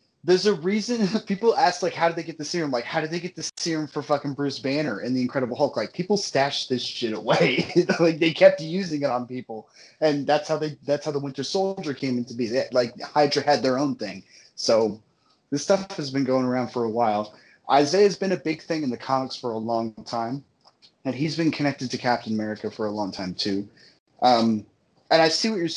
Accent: American